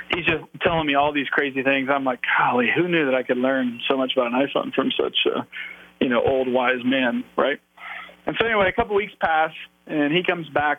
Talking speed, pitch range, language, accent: 240 wpm, 130-175 Hz, English, American